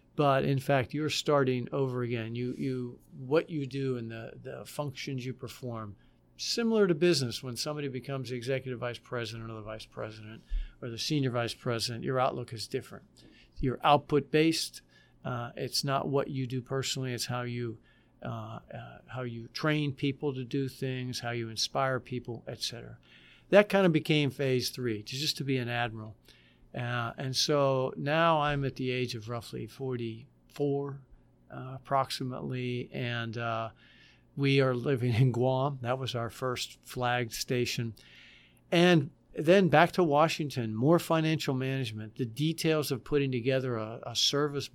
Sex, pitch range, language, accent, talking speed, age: male, 120-140 Hz, English, American, 160 wpm, 50-69